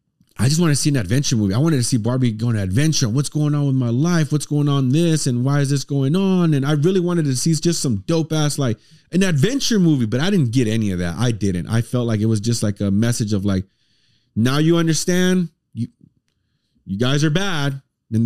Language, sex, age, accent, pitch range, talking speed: English, male, 30-49, American, 115-150 Hz, 245 wpm